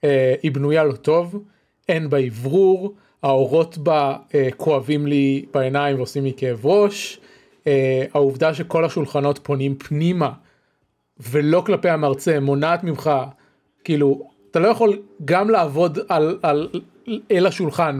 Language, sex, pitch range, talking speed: Hebrew, male, 135-180 Hz, 135 wpm